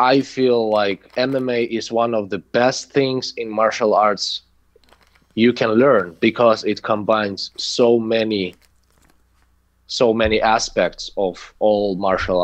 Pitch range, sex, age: 90-115 Hz, male, 20-39